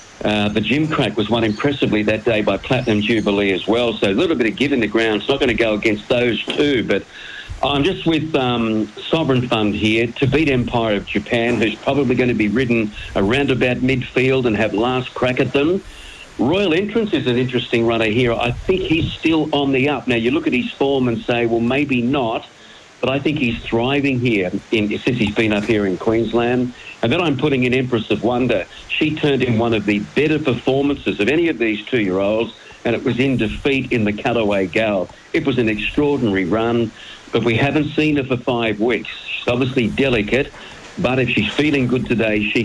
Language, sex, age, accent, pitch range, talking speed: English, male, 50-69, Australian, 110-140 Hz, 210 wpm